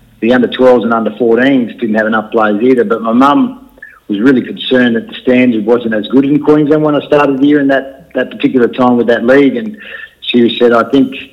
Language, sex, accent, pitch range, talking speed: English, male, Australian, 105-125 Hz, 210 wpm